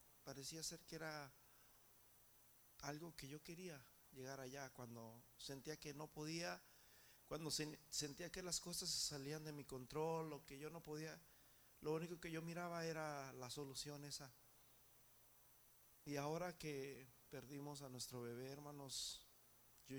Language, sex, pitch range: Spanish, male, 135-160 Hz